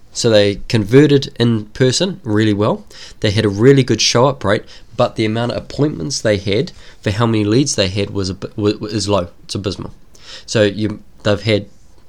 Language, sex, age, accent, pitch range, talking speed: English, male, 20-39, Australian, 95-115 Hz, 190 wpm